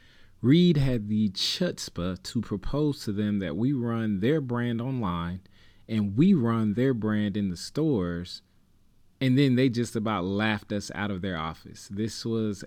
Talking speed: 165 wpm